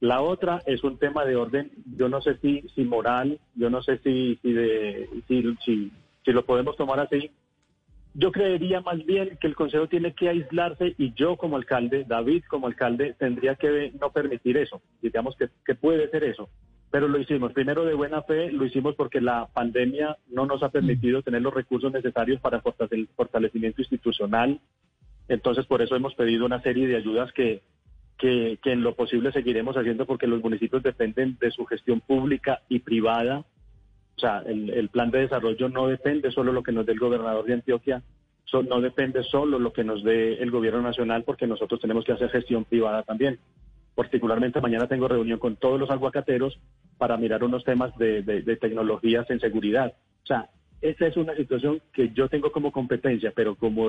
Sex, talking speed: male, 195 wpm